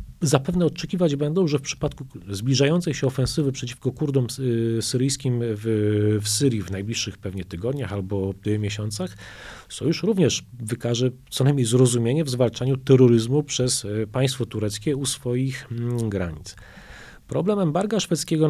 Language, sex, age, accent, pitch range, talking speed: Polish, male, 40-59, native, 115-145 Hz, 125 wpm